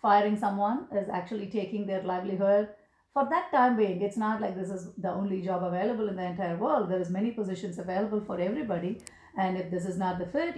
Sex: female